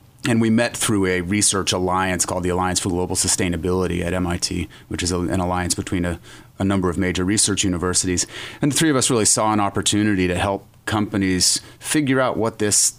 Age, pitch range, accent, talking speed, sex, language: 30-49, 95-105 Hz, American, 200 wpm, male, English